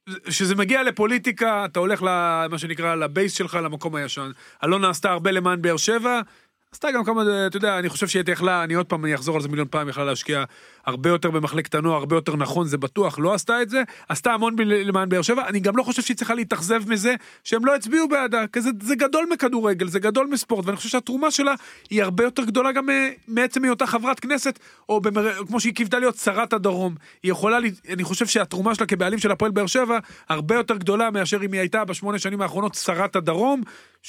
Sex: male